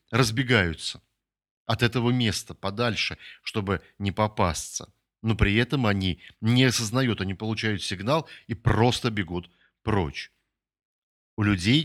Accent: native